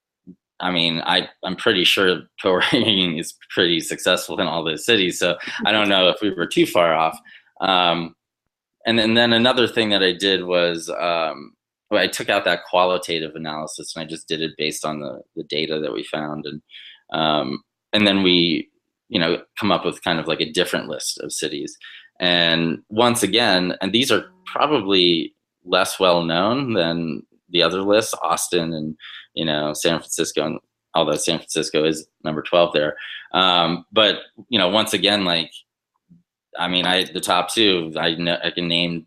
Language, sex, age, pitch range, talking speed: English, male, 20-39, 85-95 Hz, 180 wpm